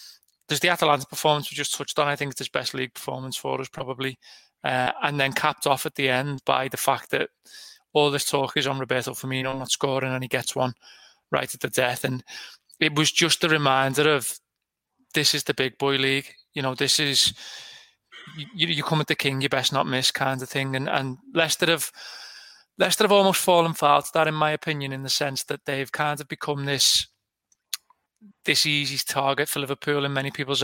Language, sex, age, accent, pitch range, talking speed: English, male, 20-39, British, 135-155 Hz, 215 wpm